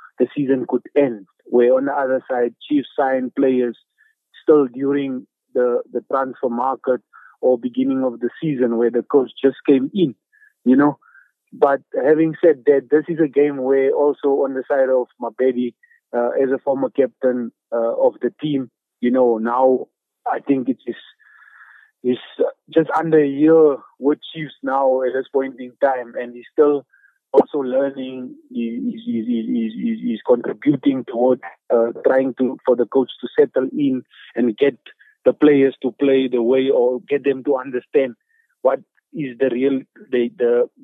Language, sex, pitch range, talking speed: English, male, 125-155 Hz, 175 wpm